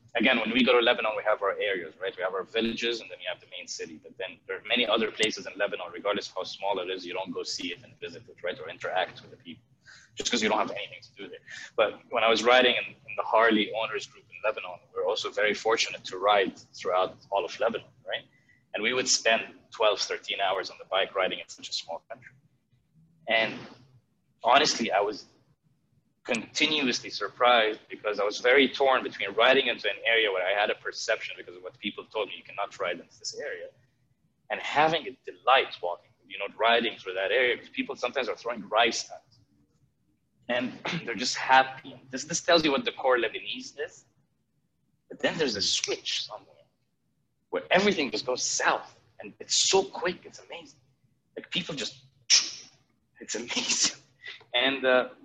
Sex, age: male, 20-39